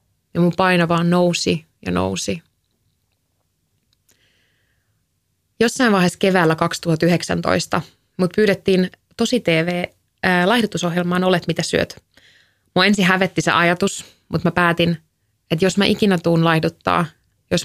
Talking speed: 110 wpm